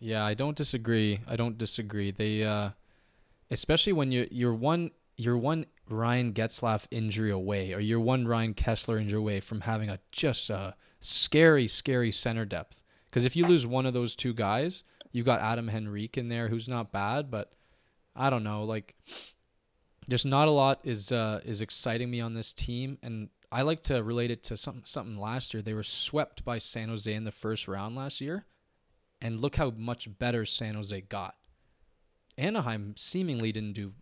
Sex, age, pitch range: male, 20-39, 110-130 Hz